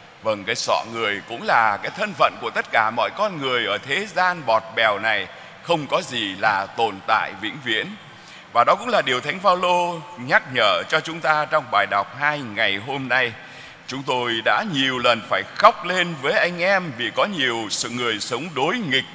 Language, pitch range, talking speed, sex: Vietnamese, 115-160 Hz, 210 wpm, male